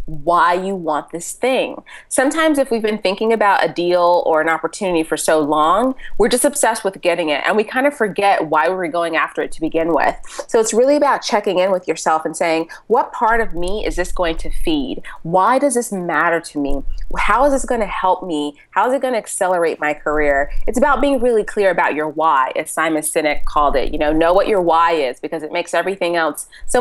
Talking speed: 235 wpm